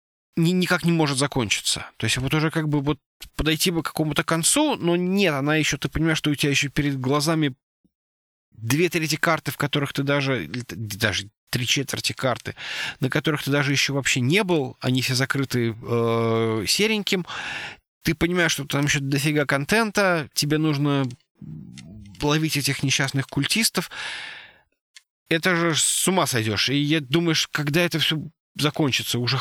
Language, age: Russian, 20-39